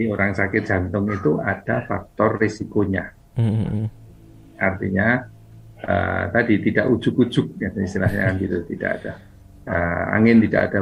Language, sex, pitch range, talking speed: Indonesian, male, 95-115 Hz, 115 wpm